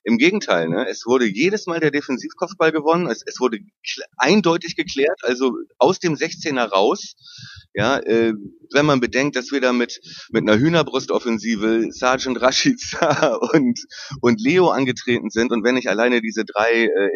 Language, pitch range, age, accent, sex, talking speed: German, 105-150 Hz, 30-49, German, male, 165 wpm